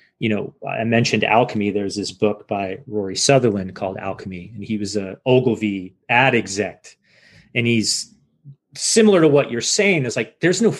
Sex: male